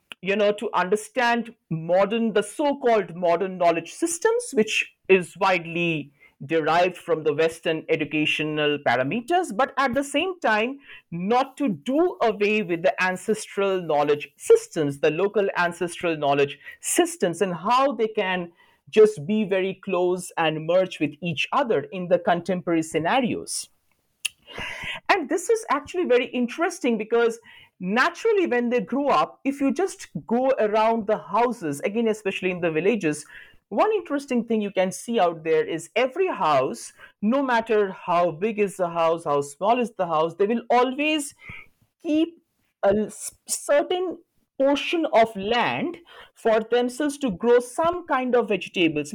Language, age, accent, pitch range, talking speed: English, 50-69, Indian, 175-250 Hz, 145 wpm